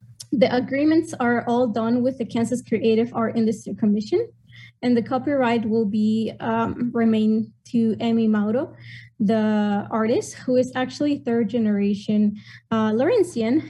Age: 20-39